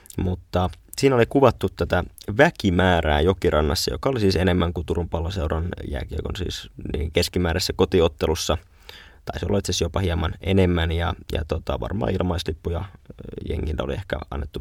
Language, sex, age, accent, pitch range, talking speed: Finnish, male, 20-39, native, 80-100 Hz, 150 wpm